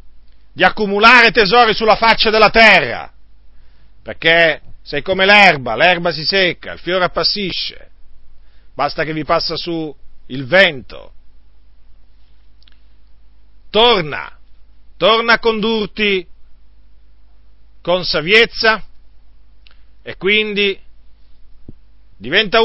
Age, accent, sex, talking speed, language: 40-59, native, male, 85 wpm, Italian